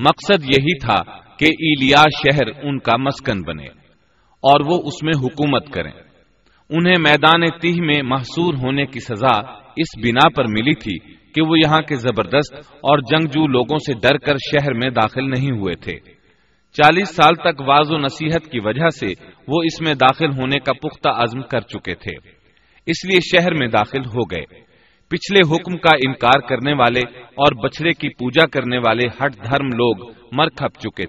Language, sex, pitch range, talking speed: Urdu, male, 125-160 Hz, 170 wpm